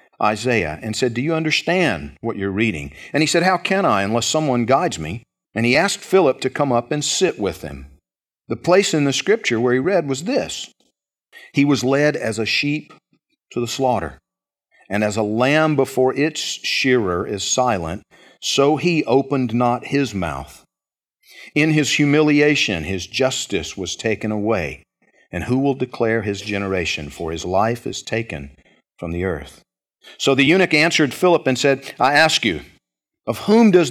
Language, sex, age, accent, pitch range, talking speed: English, male, 50-69, American, 110-155 Hz, 175 wpm